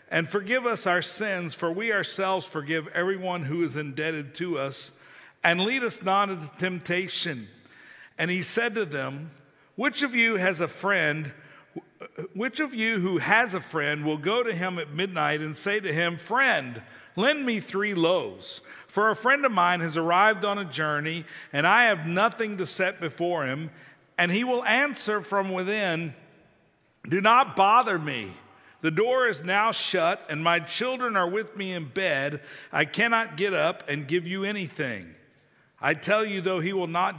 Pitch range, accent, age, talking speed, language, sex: 150-200 Hz, American, 50-69, 175 wpm, English, male